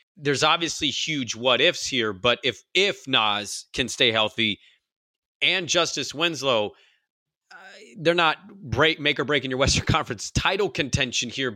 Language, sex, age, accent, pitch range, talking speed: English, male, 30-49, American, 130-155 Hz, 150 wpm